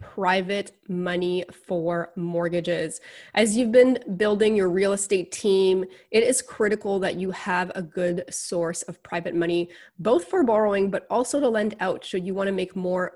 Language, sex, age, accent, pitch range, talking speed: English, female, 20-39, American, 175-200 Hz, 175 wpm